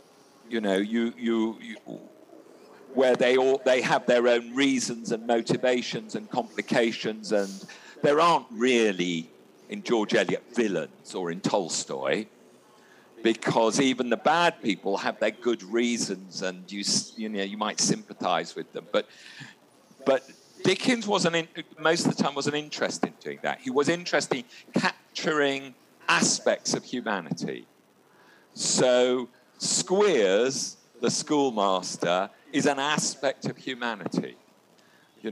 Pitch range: 100-130 Hz